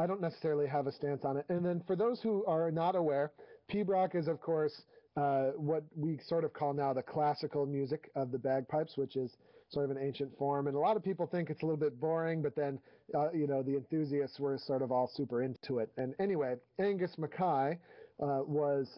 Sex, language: male, English